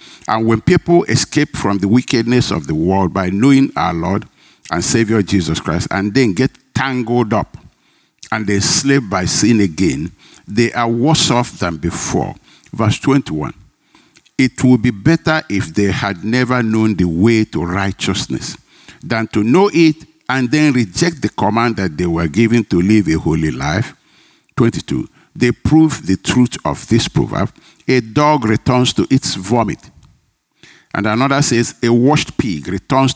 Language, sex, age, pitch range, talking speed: English, male, 60-79, 100-135 Hz, 160 wpm